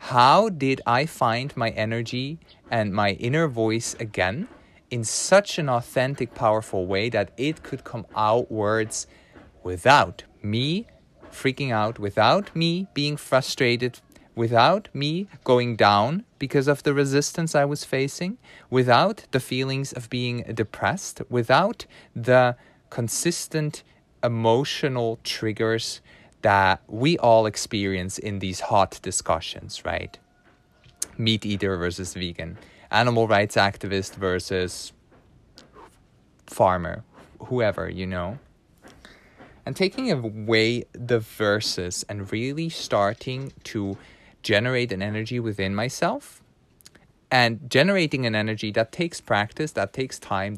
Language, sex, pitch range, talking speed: English, male, 100-135 Hz, 115 wpm